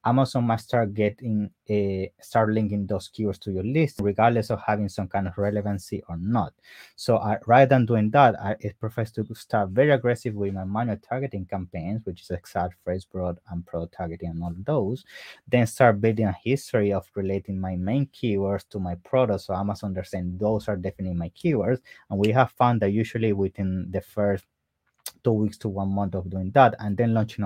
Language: English